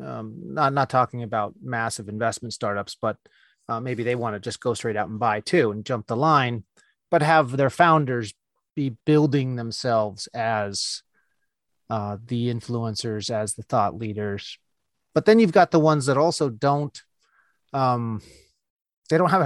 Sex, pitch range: male, 115-155 Hz